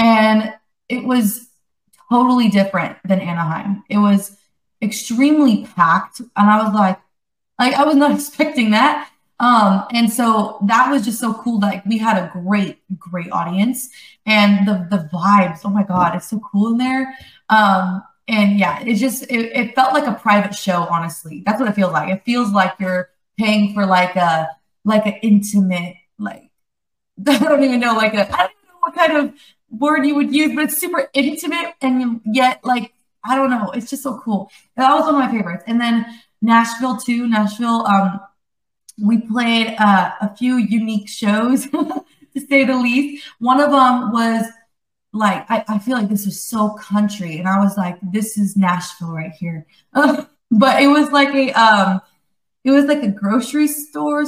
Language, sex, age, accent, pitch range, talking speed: English, female, 20-39, American, 200-265 Hz, 180 wpm